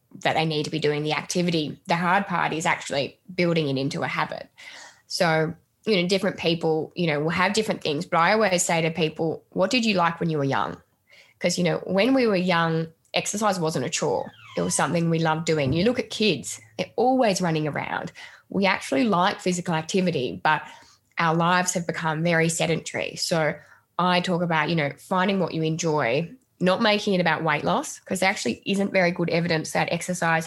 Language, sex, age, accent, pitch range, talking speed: English, female, 10-29, Australian, 160-185 Hz, 205 wpm